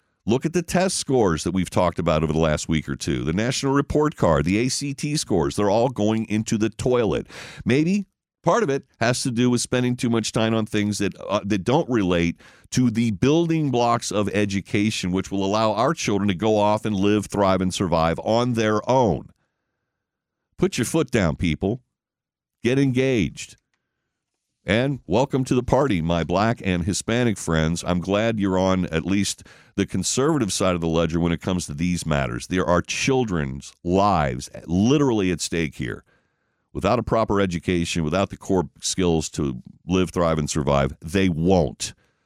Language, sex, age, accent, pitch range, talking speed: English, male, 50-69, American, 85-115 Hz, 180 wpm